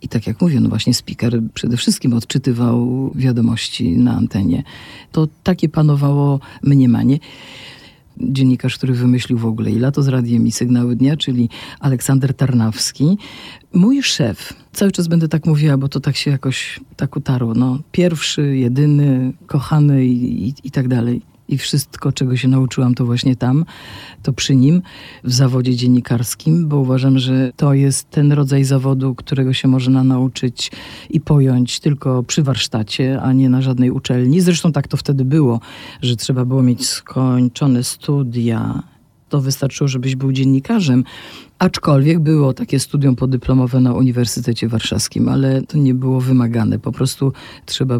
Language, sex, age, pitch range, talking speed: Polish, female, 50-69, 120-140 Hz, 155 wpm